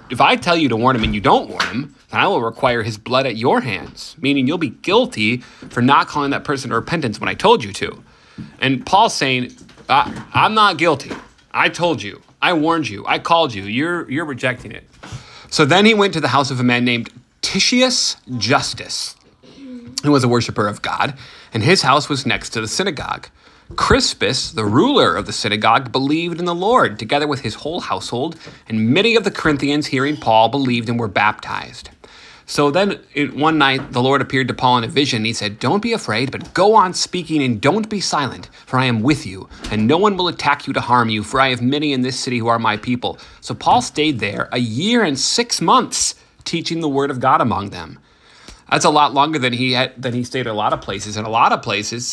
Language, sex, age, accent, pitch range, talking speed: English, male, 30-49, American, 115-155 Hz, 225 wpm